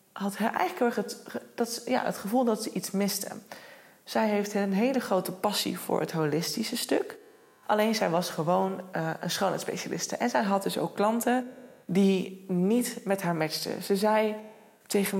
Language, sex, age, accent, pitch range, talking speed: Dutch, female, 20-39, Dutch, 175-210 Hz, 160 wpm